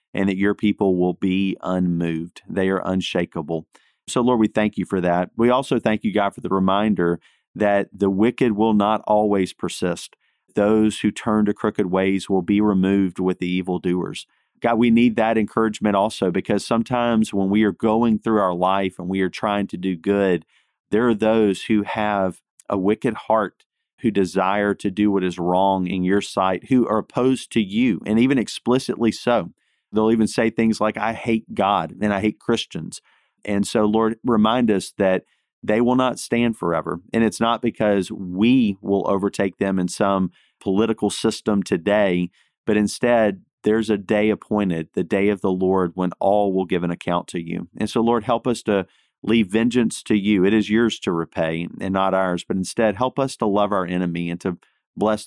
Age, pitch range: 40-59, 95-110 Hz